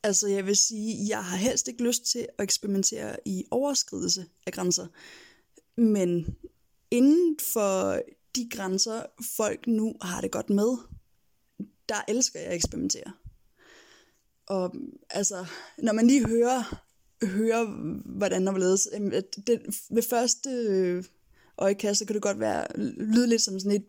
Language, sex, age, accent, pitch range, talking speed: Danish, female, 20-39, native, 190-235 Hz, 145 wpm